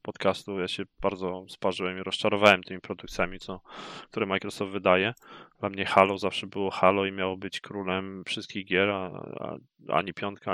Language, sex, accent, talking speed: Polish, male, native, 150 wpm